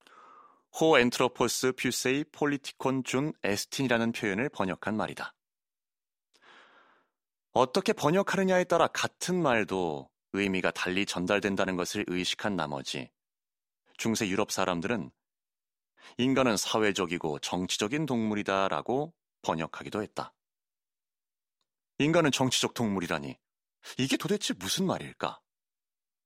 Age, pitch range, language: 30-49, 100-140 Hz, Korean